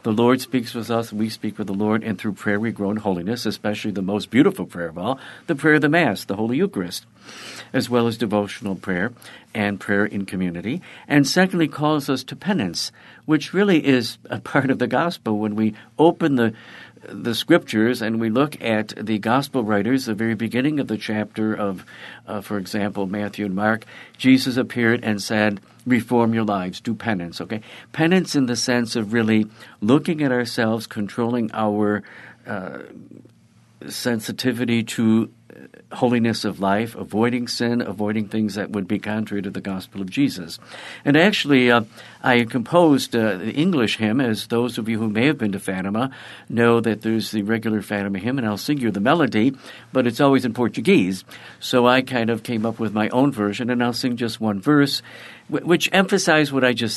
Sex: male